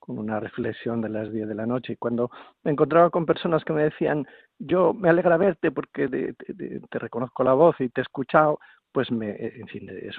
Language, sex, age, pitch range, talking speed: Spanish, male, 50-69, 110-150 Hz, 225 wpm